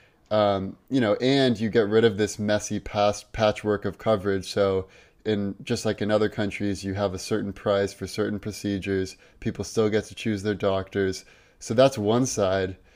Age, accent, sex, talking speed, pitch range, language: 20-39, American, male, 185 wpm, 100-110 Hz, English